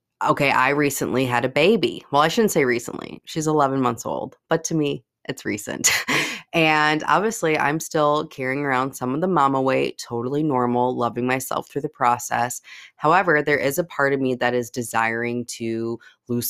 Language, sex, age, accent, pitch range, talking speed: English, female, 20-39, American, 120-140 Hz, 180 wpm